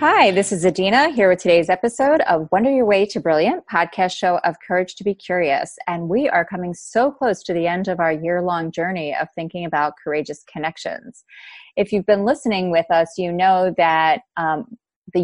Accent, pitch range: American, 165-210 Hz